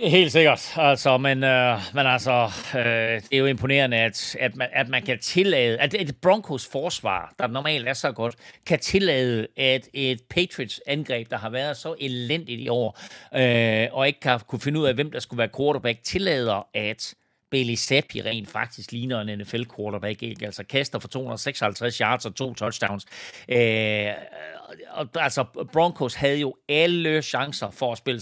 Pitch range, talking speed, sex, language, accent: 115-145 Hz, 175 wpm, male, Danish, native